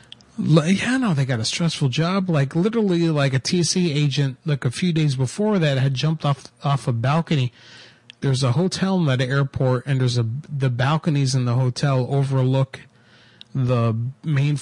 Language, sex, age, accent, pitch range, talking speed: English, male, 40-59, American, 125-160 Hz, 170 wpm